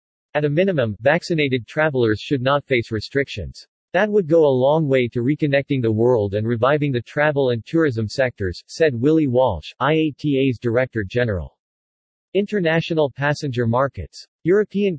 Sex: male